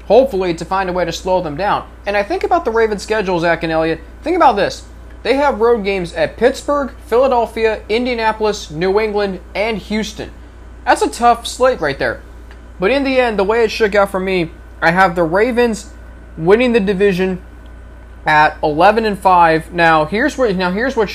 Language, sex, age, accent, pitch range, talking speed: English, male, 20-39, American, 160-220 Hz, 195 wpm